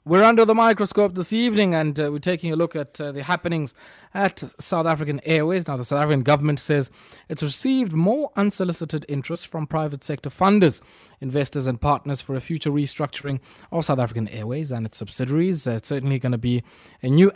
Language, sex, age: English, male, 20-39